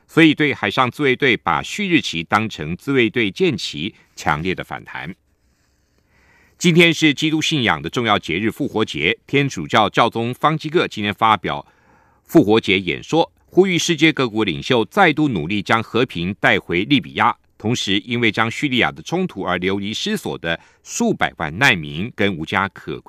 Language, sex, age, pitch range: German, male, 50-69, 100-150 Hz